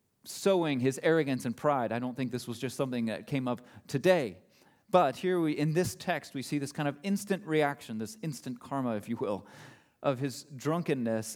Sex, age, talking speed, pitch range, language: male, 30-49, 195 wpm, 110-140 Hz, English